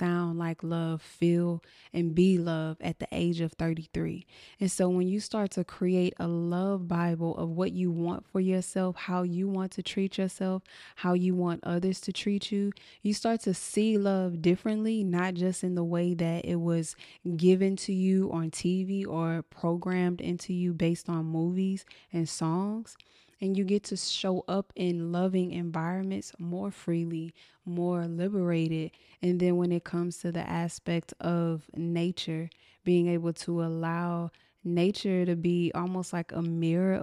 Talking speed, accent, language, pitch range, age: 165 wpm, American, English, 170-185 Hz, 20-39